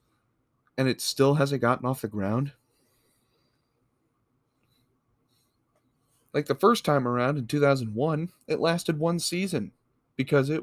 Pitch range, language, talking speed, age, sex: 115-140 Hz, English, 120 wpm, 20-39, male